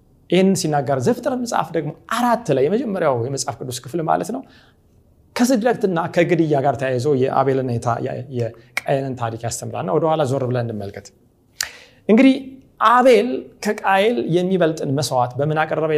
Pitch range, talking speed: 120-170 Hz, 115 wpm